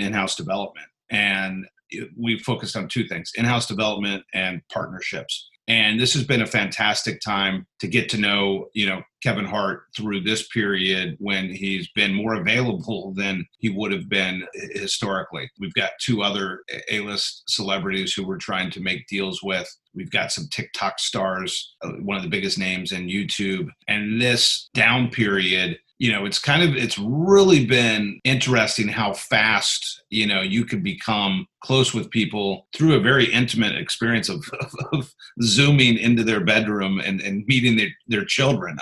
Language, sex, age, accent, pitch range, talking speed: English, male, 40-59, American, 100-125 Hz, 165 wpm